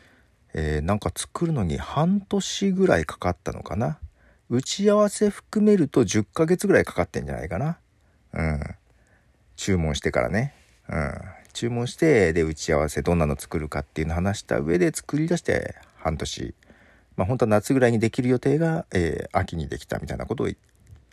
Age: 50-69